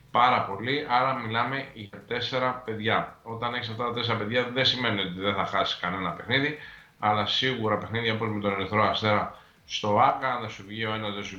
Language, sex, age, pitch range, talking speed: Greek, male, 20-39, 95-110 Hz, 200 wpm